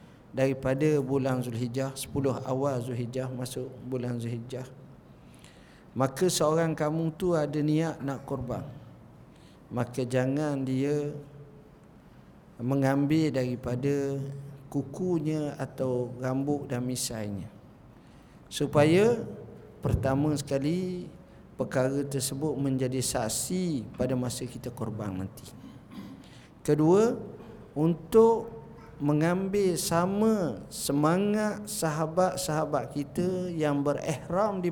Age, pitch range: 50-69, 130-150 Hz